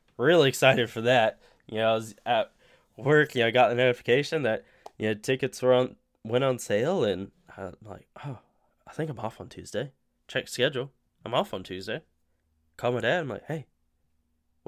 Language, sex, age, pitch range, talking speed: English, male, 10-29, 105-135 Hz, 200 wpm